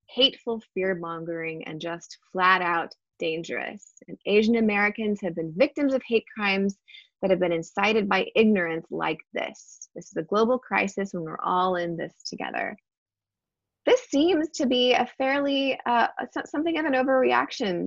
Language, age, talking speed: English, 20-39, 150 wpm